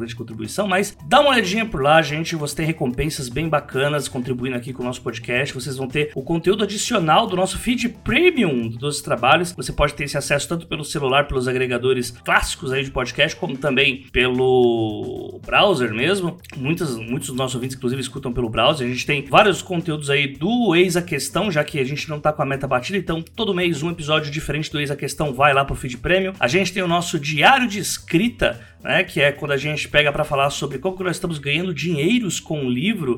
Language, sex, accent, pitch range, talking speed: Portuguese, male, Brazilian, 135-195 Hz, 220 wpm